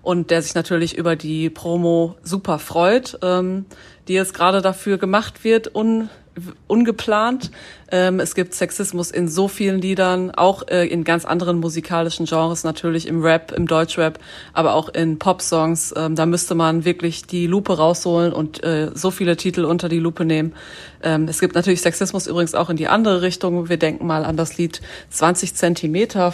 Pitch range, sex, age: 165-185 Hz, female, 30-49